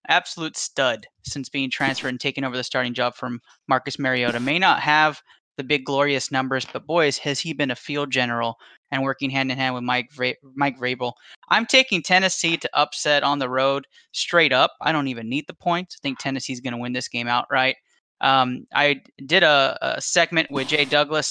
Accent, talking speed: American, 205 wpm